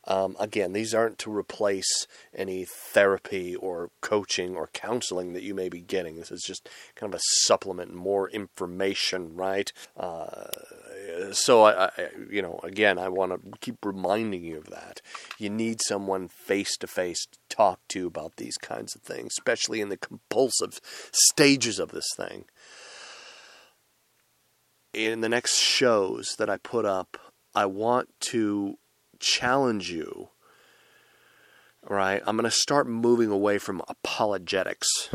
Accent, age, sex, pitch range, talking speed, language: American, 30-49, male, 95-115 Hz, 140 wpm, English